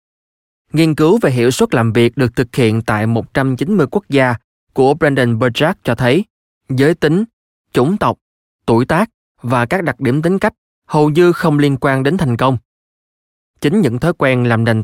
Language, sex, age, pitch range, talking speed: Vietnamese, male, 20-39, 115-150 Hz, 180 wpm